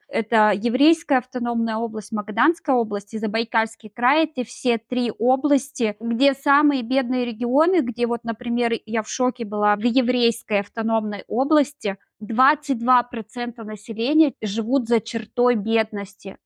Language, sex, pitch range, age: Russian, female, 215-255 Hz, 20-39